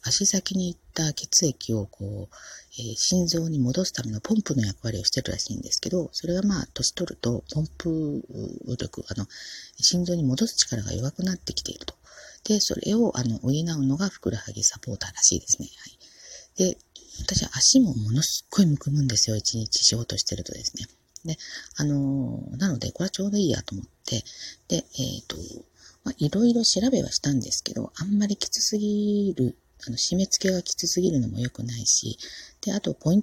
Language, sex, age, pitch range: Japanese, female, 40-59, 120-180 Hz